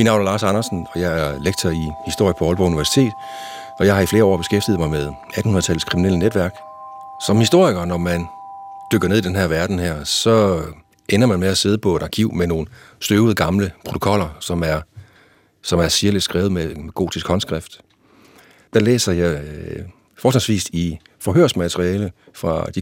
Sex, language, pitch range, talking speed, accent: male, Danish, 85-105 Hz, 180 wpm, native